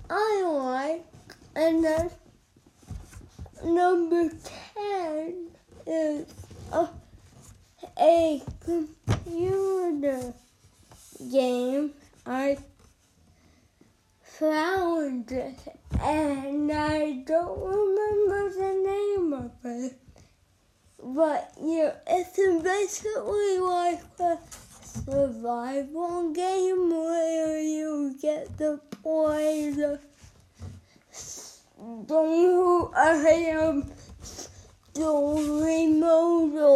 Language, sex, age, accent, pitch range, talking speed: English, female, 20-39, American, 270-335 Hz, 70 wpm